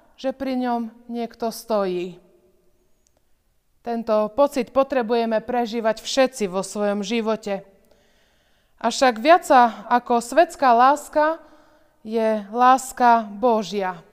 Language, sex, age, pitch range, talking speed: Slovak, female, 20-39, 220-285 Hz, 95 wpm